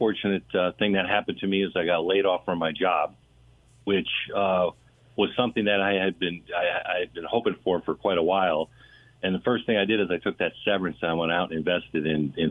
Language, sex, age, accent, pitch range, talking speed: English, male, 50-69, American, 90-105 Hz, 250 wpm